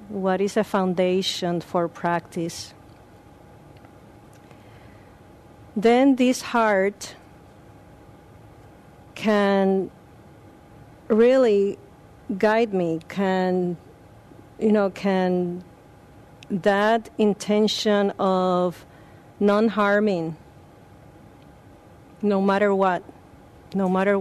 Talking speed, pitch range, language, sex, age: 65 wpm, 175-205 Hz, English, female, 40-59